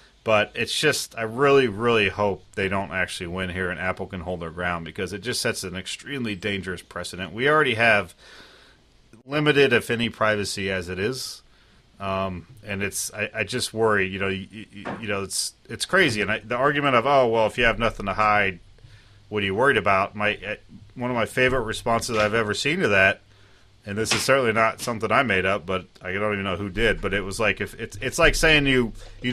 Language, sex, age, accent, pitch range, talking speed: English, male, 30-49, American, 95-115 Hz, 215 wpm